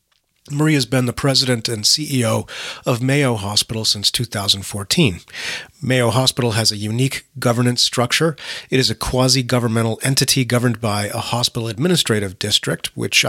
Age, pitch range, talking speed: 40-59, 110-130 Hz, 140 wpm